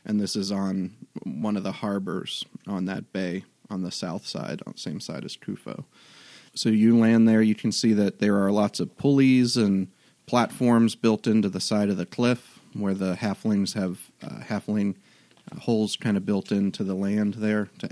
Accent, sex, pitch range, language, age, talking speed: American, male, 100-115 Hz, English, 30-49, 195 wpm